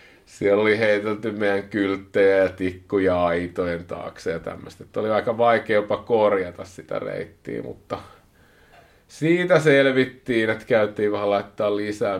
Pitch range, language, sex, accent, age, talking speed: 90-105 Hz, Finnish, male, native, 30-49, 125 wpm